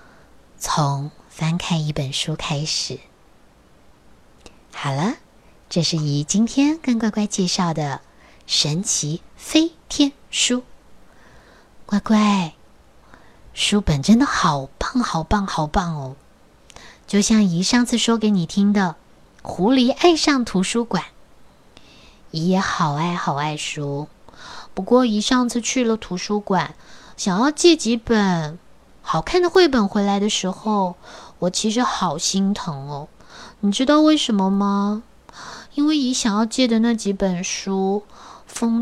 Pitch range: 175-230 Hz